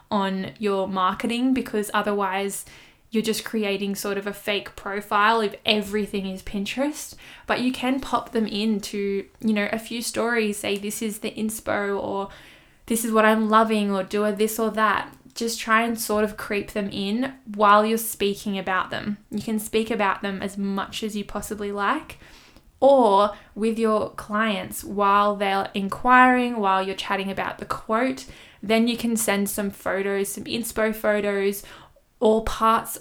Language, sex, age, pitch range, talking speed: English, female, 10-29, 200-230 Hz, 170 wpm